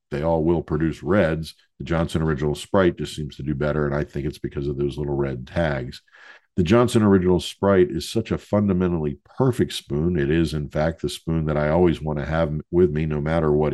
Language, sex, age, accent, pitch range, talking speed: English, male, 50-69, American, 75-95 Hz, 225 wpm